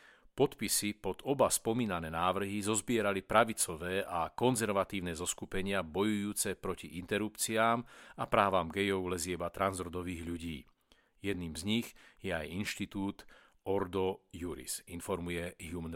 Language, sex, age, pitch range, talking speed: Slovak, male, 40-59, 90-110 Hz, 110 wpm